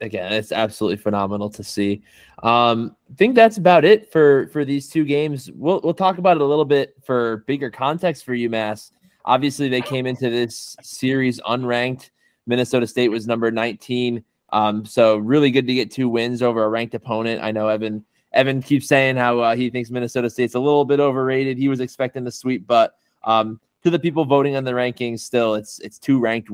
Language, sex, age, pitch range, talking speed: English, male, 20-39, 115-135 Hz, 200 wpm